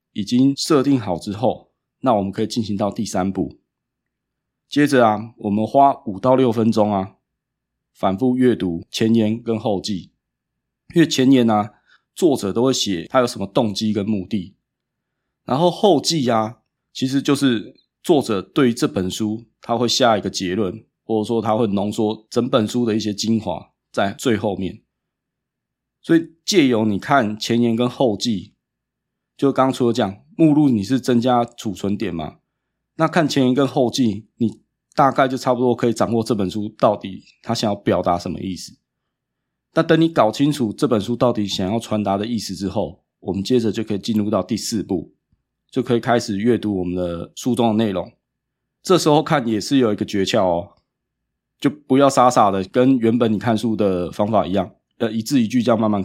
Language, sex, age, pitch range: Chinese, male, 20-39, 105-130 Hz